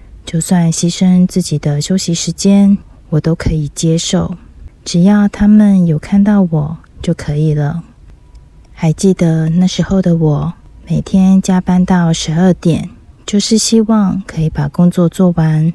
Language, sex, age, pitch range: Chinese, female, 30-49, 155-185 Hz